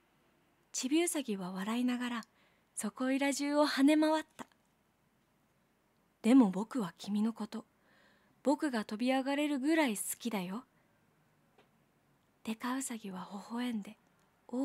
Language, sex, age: Japanese, female, 20-39